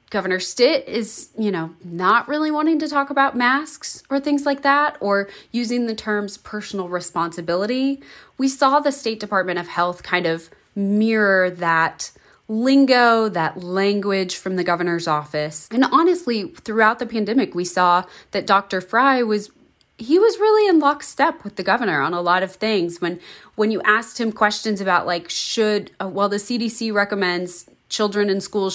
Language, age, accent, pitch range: English, 20-39, American, 180-240 Hz